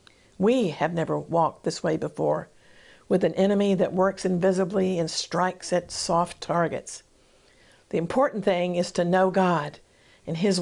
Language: English